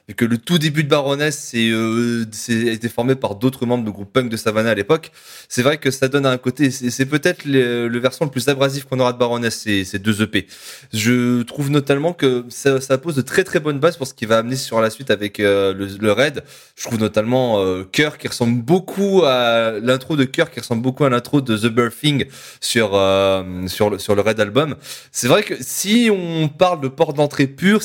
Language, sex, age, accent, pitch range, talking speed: French, male, 20-39, French, 110-145 Hz, 235 wpm